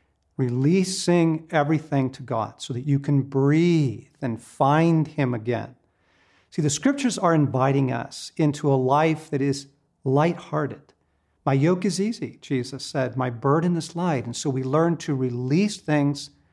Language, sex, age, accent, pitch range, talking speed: English, male, 50-69, American, 135-185 Hz, 155 wpm